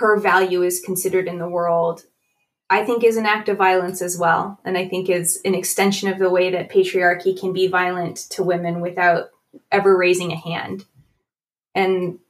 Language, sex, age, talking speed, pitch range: English, female, 20-39, 185 wpm, 180-200 Hz